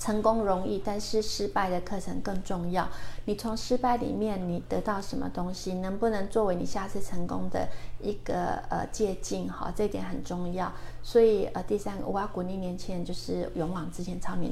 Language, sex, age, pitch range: Chinese, female, 30-49, 180-210 Hz